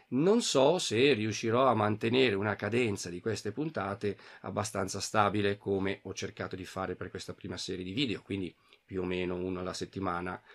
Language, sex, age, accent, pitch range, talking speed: Italian, male, 40-59, native, 95-135 Hz, 175 wpm